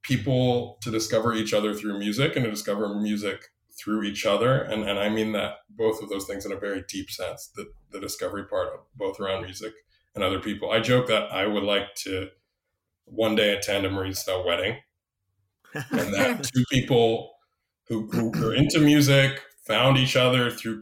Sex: male